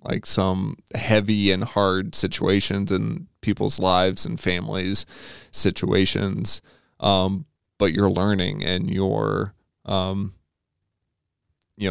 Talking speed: 100 wpm